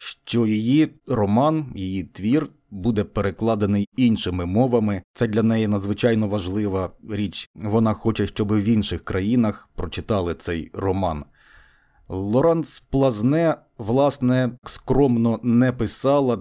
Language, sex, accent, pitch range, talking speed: Ukrainian, male, native, 100-125 Hz, 110 wpm